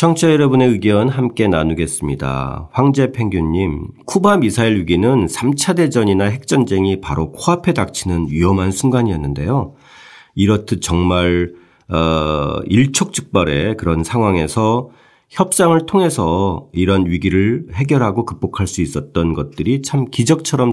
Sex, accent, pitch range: male, native, 85-130 Hz